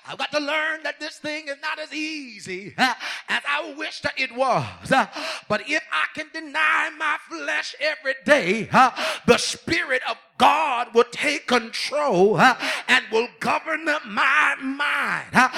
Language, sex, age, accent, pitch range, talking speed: English, male, 30-49, American, 250-315 Hz, 150 wpm